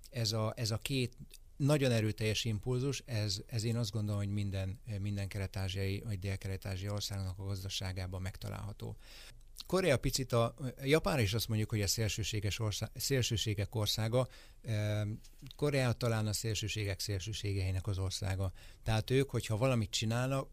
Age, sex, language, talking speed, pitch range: 60-79, male, Hungarian, 130 wpm, 100-115 Hz